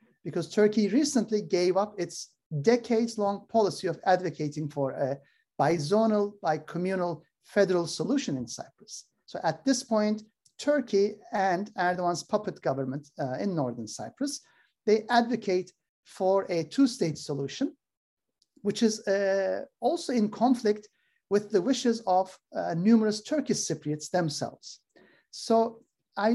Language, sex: Turkish, male